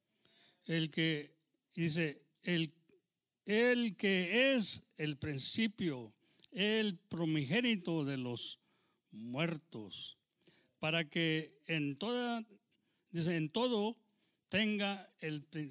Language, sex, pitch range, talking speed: English, male, 145-195 Hz, 90 wpm